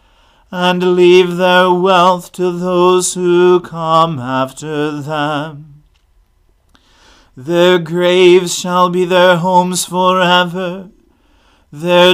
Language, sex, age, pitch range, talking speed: English, male, 40-59, 175-185 Hz, 90 wpm